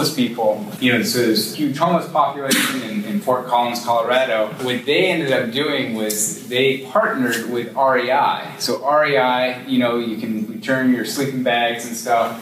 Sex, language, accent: male, English, American